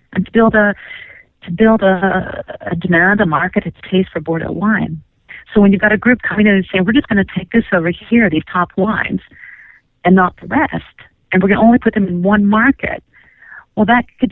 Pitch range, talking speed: 165-220 Hz, 220 wpm